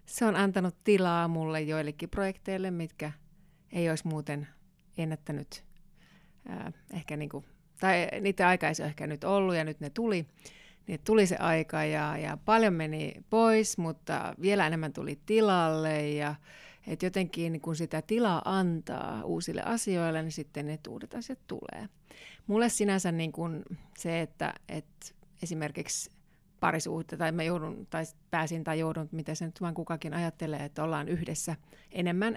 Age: 30-49